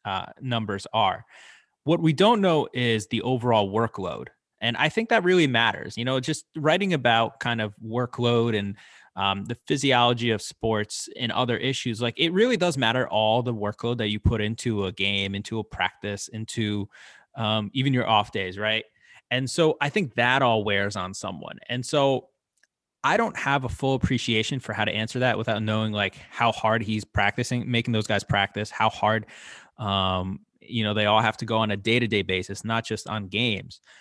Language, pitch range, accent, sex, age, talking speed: English, 105-130 Hz, American, male, 20-39, 190 wpm